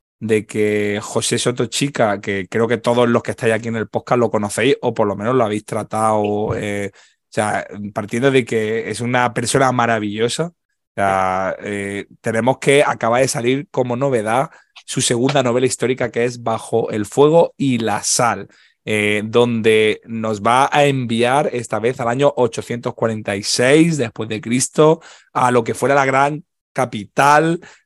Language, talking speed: Spanish, 160 wpm